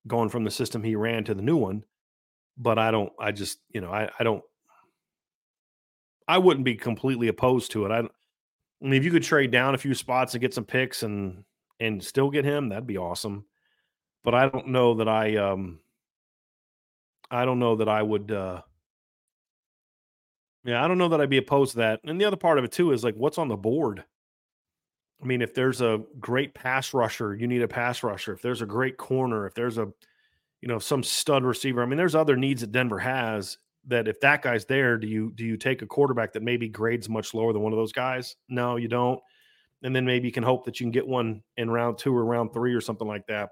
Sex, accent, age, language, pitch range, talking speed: male, American, 40-59, English, 110-130 Hz, 230 wpm